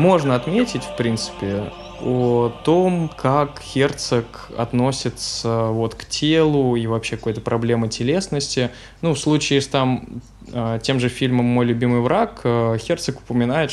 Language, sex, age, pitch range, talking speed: Russian, male, 20-39, 115-135 Hz, 125 wpm